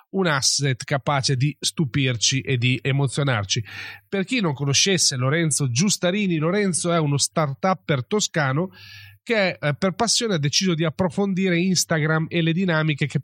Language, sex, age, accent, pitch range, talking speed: Italian, male, 30-49, native, 140-185 Hz, 145 wpm